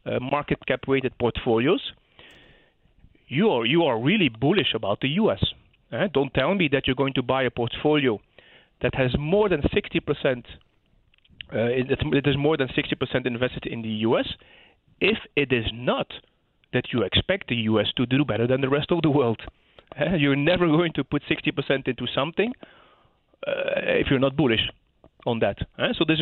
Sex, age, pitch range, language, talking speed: male, 40-59, 120-150 Hz, English, 190 wpm